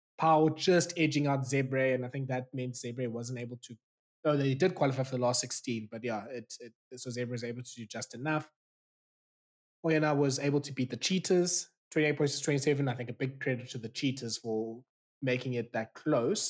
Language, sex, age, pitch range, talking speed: English, male, 20-39, 115-140 Hz, 220 wpm